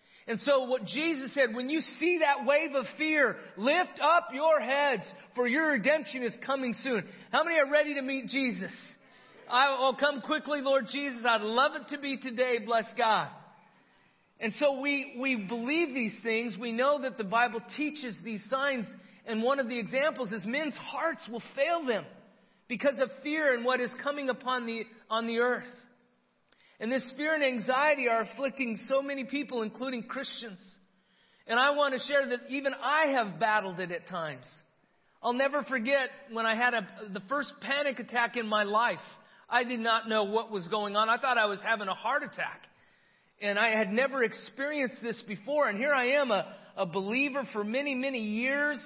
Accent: American